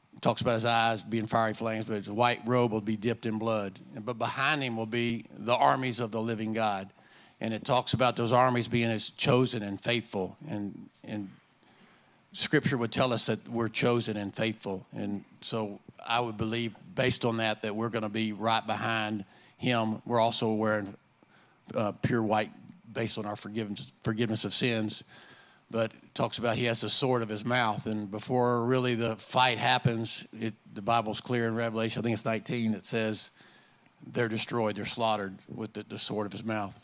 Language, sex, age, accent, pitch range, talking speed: English, male, 50-69, American, 110-120 Hz, 190 wpm